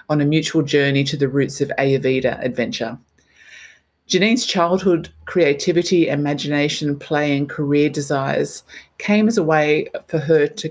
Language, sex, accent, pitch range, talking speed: English, female, Australian, 140-170 Hz, 140 wpm